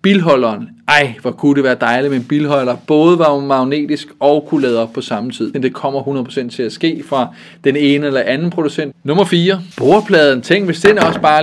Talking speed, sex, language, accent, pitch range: 210 wpm, male, Danish, native, 130-160 Hz